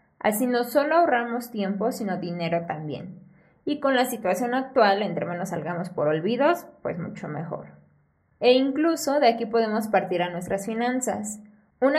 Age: 20-39